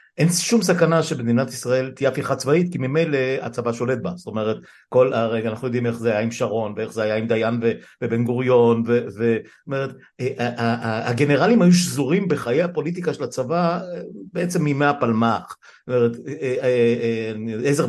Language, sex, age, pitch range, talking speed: Hebrew, male, 60-79, 115-160 Hz, 155 wpm